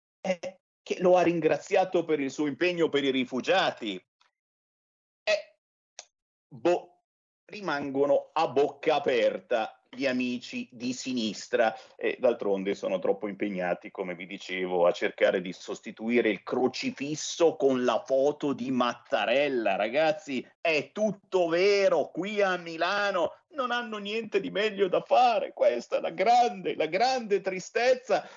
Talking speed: 130 wpm